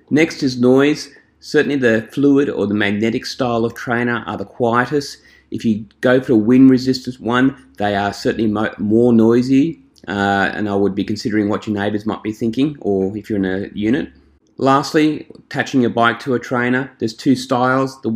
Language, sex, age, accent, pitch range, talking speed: English, male, 30-49, Australian, 105-125 Hz, 190 wpm